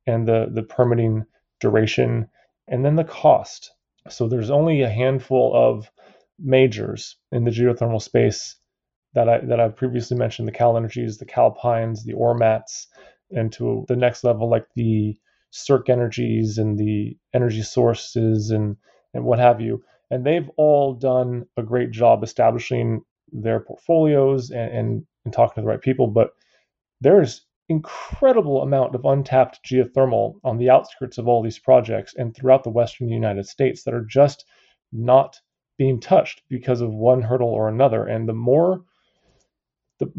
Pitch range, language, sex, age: 110-130 Hz, English, male, 20-39